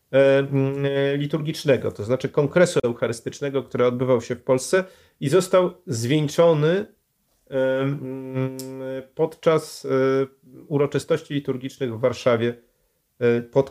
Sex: male